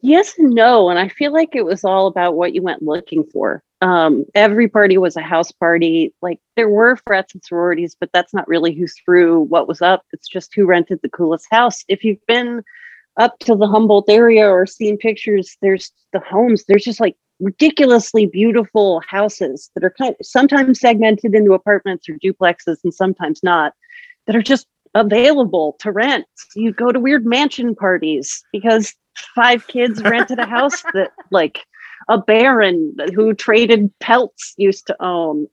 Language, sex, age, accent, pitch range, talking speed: English, female, 40-59, American, 185-240 Hz, 180 wpm